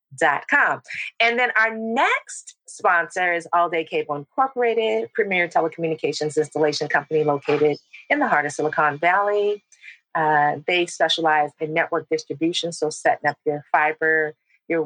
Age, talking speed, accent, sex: 40-59, 140 wpm, American, female